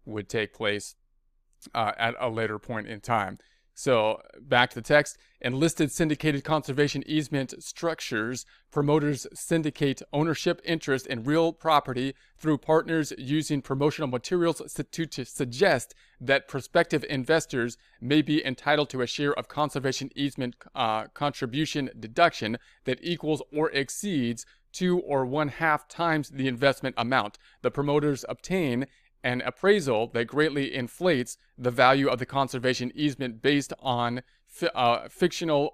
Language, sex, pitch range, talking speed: English, male, 125-150 Hz, 140 wpm